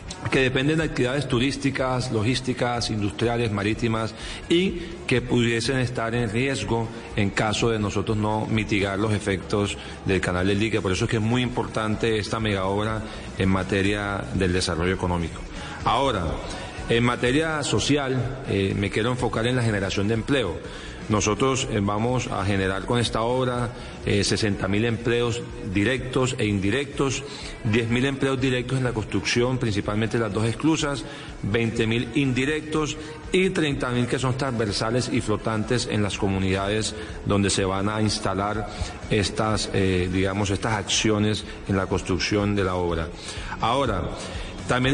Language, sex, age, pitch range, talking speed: Spanish, male, 40-59, 100-130 Hz, 145 wpm